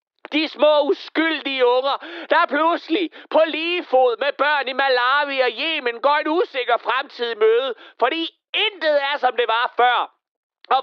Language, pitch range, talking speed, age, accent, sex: Danish, 240-325 Hz, 155 wpm, 40-59, native, male